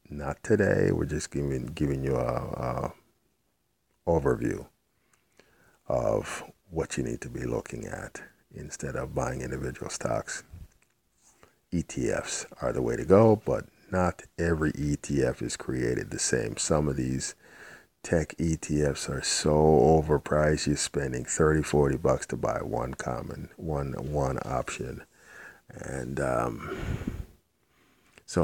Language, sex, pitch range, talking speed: English, male, 70-80 Hz, 125 wpm